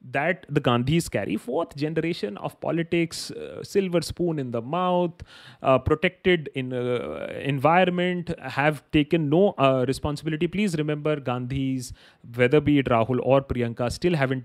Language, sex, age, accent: Hindi, male, 30-49, native